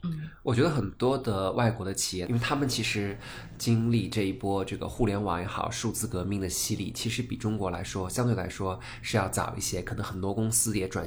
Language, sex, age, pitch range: Chinese, male, 20-39, 95-120 Hz